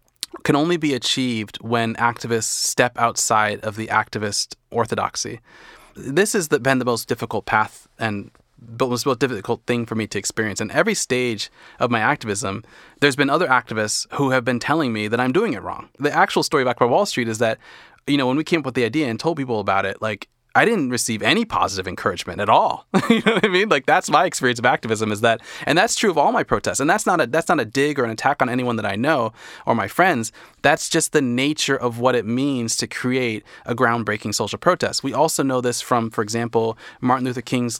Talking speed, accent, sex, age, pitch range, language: 225 wpm, American, male, 30-49, 115-140 Hz, English